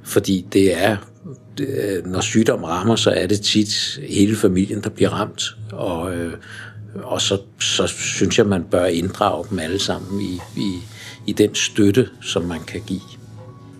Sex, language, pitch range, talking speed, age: male, Danish, 95-115 Hz, 160 wpm, 60-79